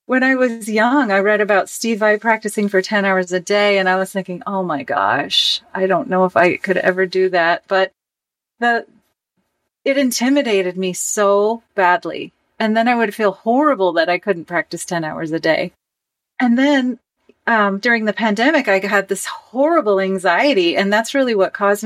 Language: English